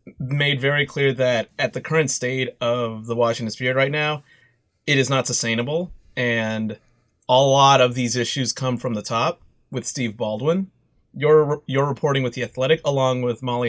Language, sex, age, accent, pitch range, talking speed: English, male, 30-49, American, 115-140 Hz, 175 wpm